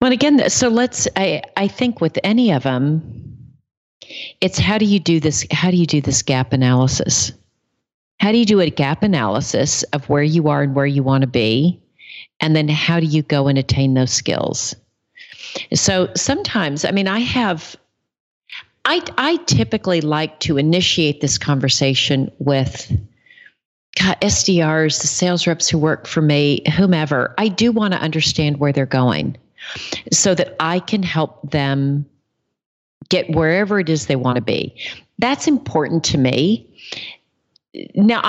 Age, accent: 40-59, American